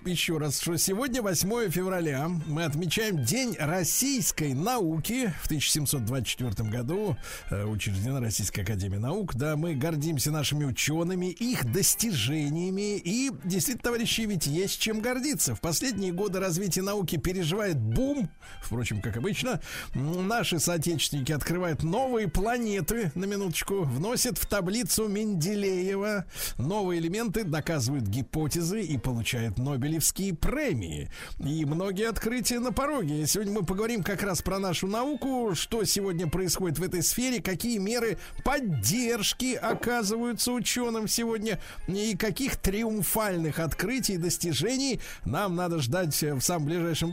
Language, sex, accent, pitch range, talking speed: Russian, male, native, 155-210 Hz, 125 wpm